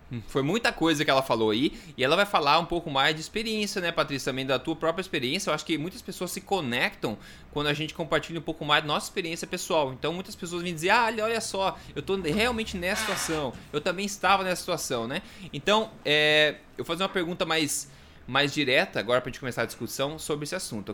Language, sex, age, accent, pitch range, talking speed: Portuguese, male, 20-39, Brazilian, 145-190 Hz, 225 wpm